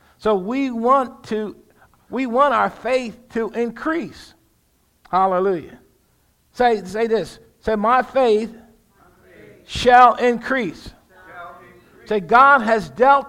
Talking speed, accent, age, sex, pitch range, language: 105 wpm, American, 50-69, male, 195-250 Hz, English